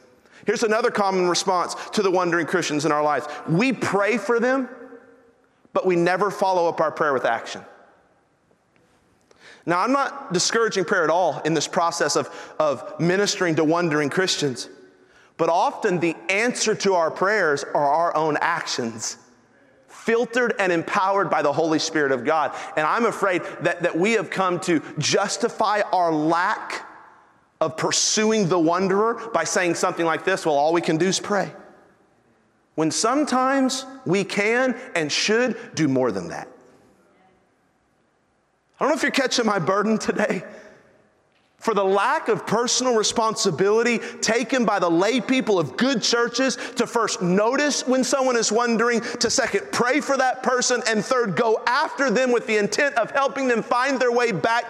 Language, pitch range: English, 180-245 Hz